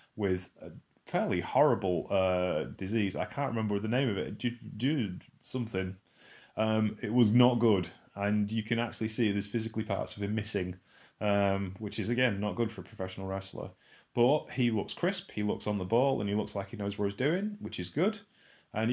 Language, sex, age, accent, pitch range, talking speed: English, male, 30-49, British, 95-120 Hz, 205 wpm